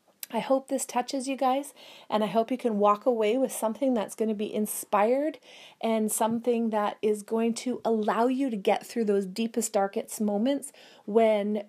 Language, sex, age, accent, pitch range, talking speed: English, female, 30-49, American, 215-260 Hz, 185 wpm